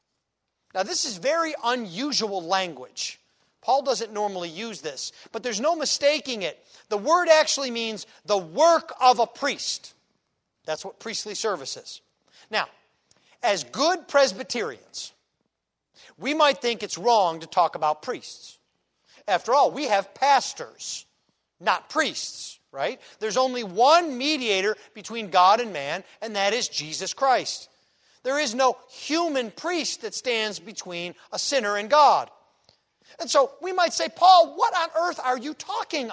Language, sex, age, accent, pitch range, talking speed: English, male, 40-59, American, 195-290 Hz, 145 wpm